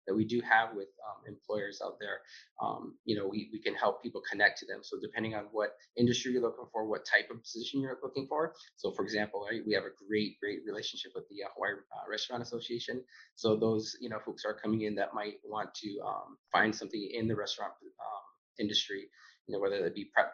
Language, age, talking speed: English, 20-39, 225 wpm